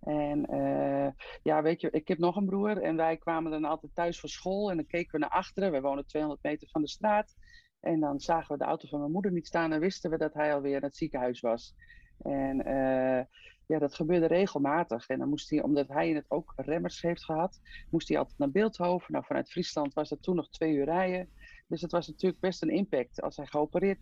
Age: 40-59